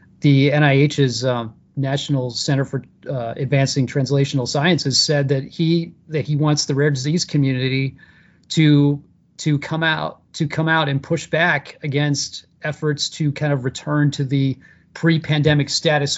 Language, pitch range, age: English, 130-155 Hz, 40-59